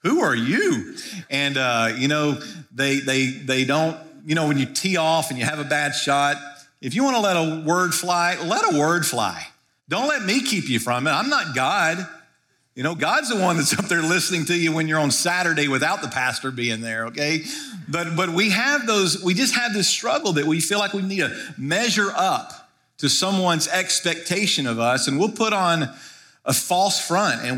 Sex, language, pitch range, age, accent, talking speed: male, English, 140-180 Hz, 50-69, American, 215 wpm